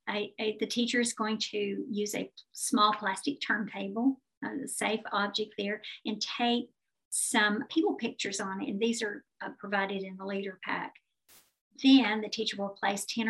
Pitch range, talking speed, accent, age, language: 195-240 Hz, 170 wpm, American, 50-69, English